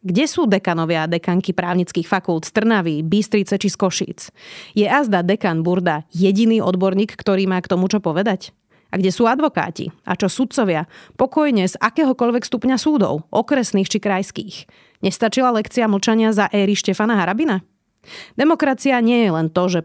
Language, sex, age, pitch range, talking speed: Slovak, female, 30-49, 180-230 Hz, 155 wpm